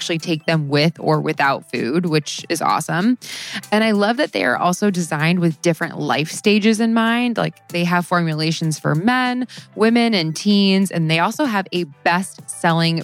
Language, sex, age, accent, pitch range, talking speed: English, female, 20-39, American, 160-205 Hz, 180 wpm